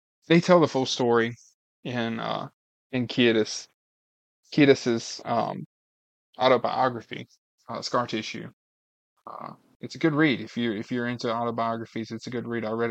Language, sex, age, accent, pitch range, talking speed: English, male, 20-39, American, 110-125 Hz, 150 wpm